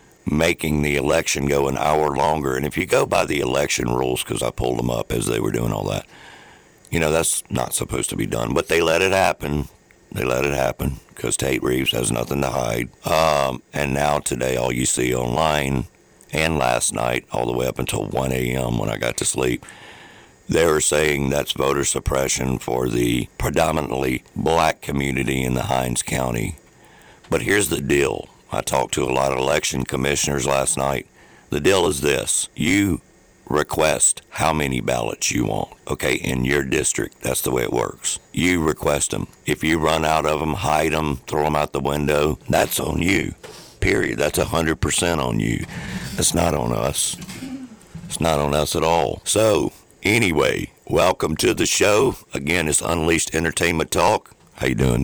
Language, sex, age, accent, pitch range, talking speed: English, male, 60-79, American, 65-75 Hz, 190 wpm